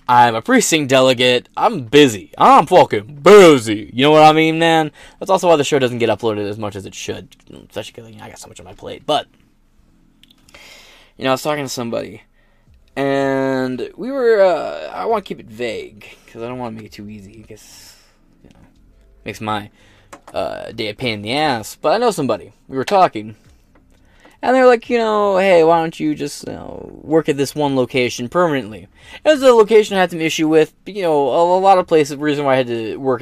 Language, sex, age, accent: English, male, 10-29, American